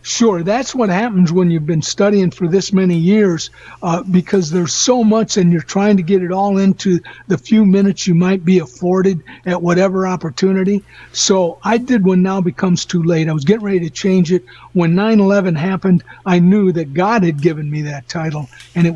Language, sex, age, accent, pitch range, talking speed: English, male, 60-79, American, 170-200 Hz, 205 wpm